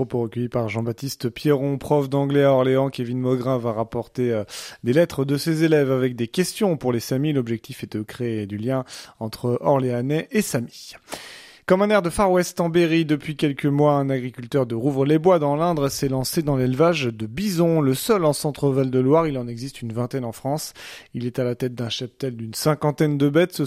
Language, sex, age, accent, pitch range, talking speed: French, male, 30-49, French, 120-155 Hz, 210 wpm